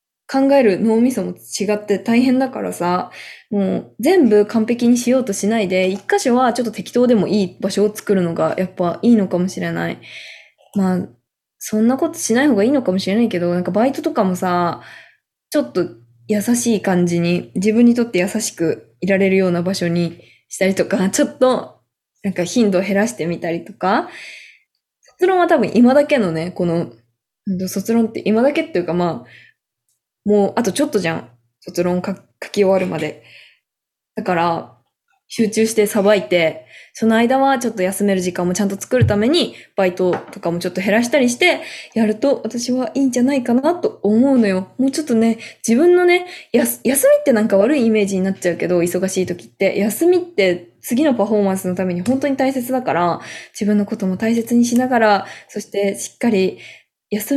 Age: 20-39